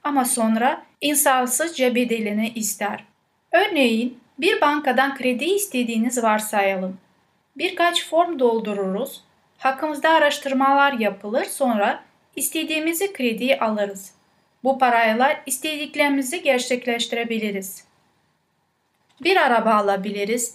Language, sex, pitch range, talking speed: Turkish, female, 215-275 Hz, 80 wpm